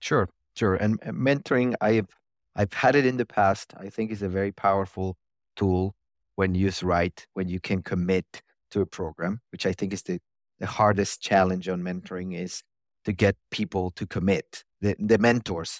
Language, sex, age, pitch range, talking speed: English, male, 30-49, 90-110 Hz, 180 wpm